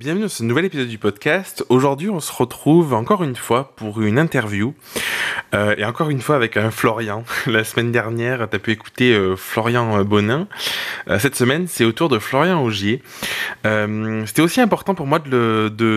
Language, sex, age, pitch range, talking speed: French, male, 20-39, 110-140 Hz, 195 wpm